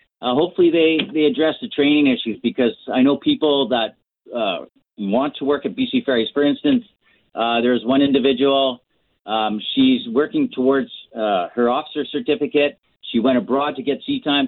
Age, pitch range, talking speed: 40-59, 120-150 Hz, 170 wpm